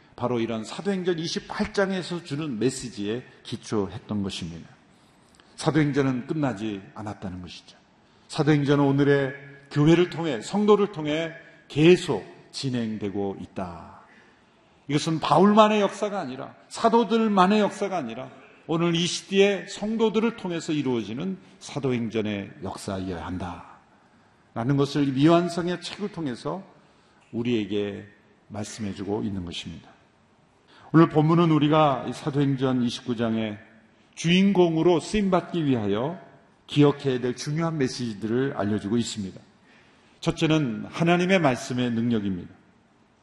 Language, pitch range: Korean, 110-175 Hz